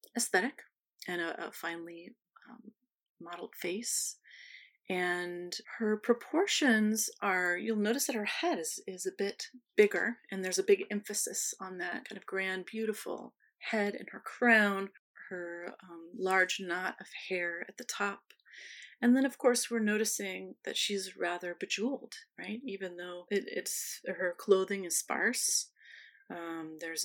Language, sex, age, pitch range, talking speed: English, female, 30-49, 185-240 Hz, 150 wpm